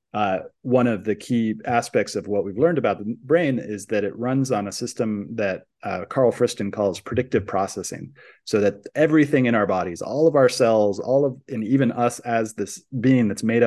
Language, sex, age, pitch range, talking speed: English, male, 30-49, 100-120 Hz, 205 wpm